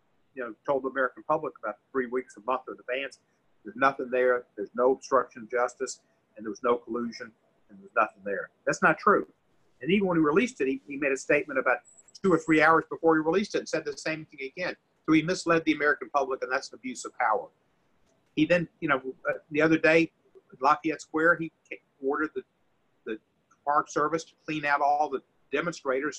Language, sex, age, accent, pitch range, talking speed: English, male, 50-69, American, 135-180 Hz, 215 wpm